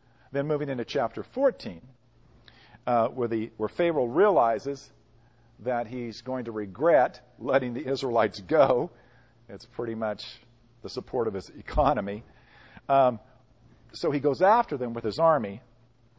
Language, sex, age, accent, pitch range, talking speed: English, male, 50-69, American, 115-150 Hz, 135 wpm